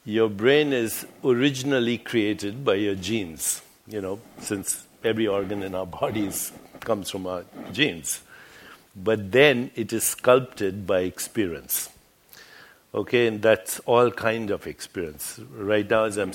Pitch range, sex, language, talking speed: 100-115 Hz, male, English, 140 wpm